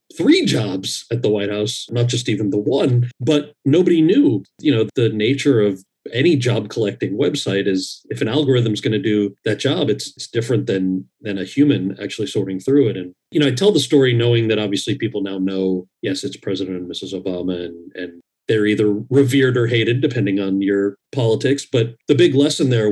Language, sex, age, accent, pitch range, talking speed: English, male, 40-59, American, 100-135 Hz, 205 wpm